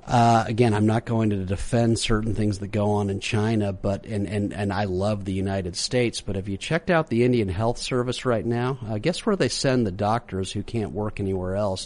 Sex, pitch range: male, 100-120 Hz